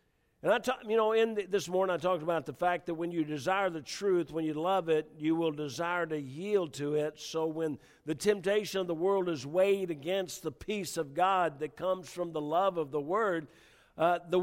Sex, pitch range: male, 165-200 Hz